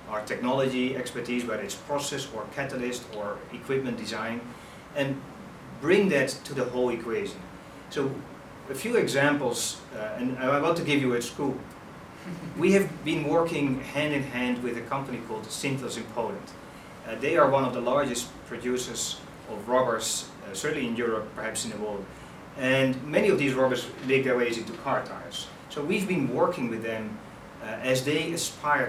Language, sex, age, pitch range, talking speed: English, male, 30-49, 120-140 Hz, 175 wpm